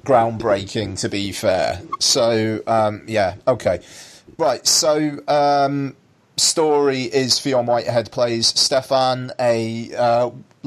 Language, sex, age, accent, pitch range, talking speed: English, male, 30-49, British, 110-130 Hz, 105 wpm